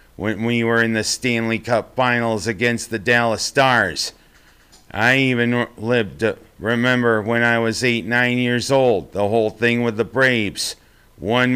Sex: male